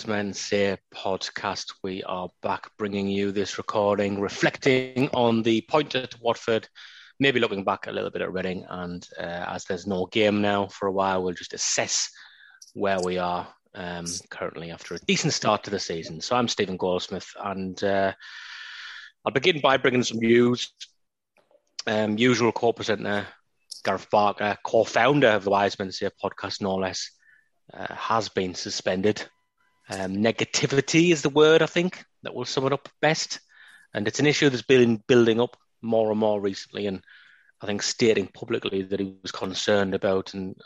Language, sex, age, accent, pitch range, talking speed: English, male, 30-49, British, 100-120 Hz, 170 wpm